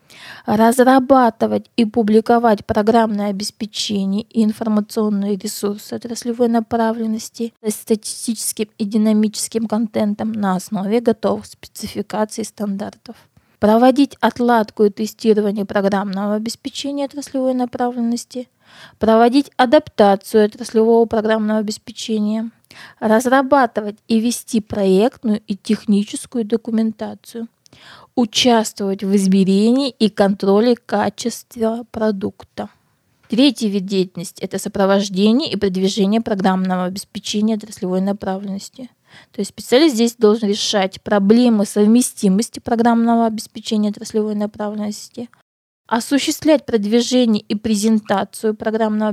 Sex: female